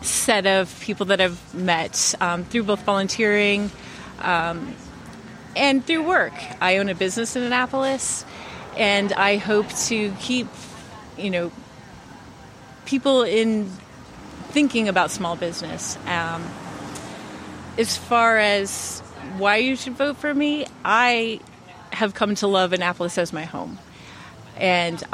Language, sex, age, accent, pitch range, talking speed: English, female, 30-49, American, 170-215 Hz, 125 wpm